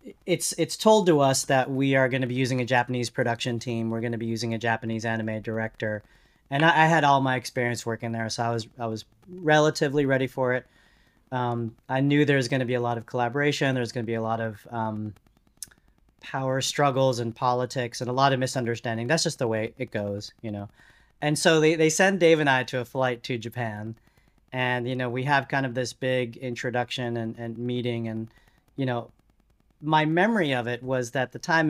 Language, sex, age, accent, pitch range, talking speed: English, male, 30-49, American, 115-135 Hz, 215 wpm